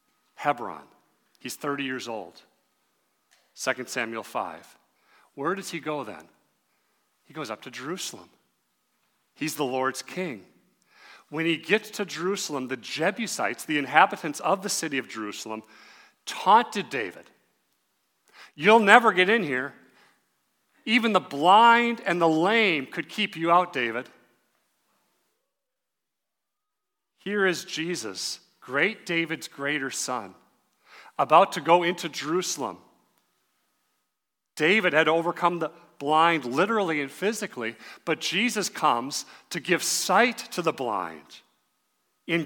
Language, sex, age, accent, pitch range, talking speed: English, male, 40-59, American, 150-200 Hz, 120 wpm